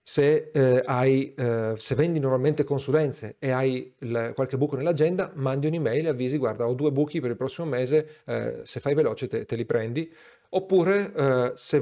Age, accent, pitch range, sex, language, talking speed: 40-59, native, 125-160 Hz, male, Italian, 190 wpm